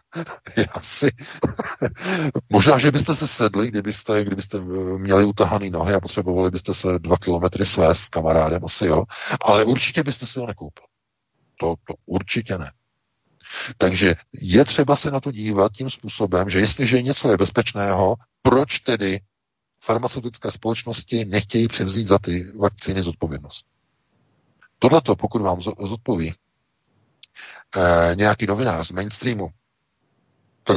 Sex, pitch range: male, 90-115 Hz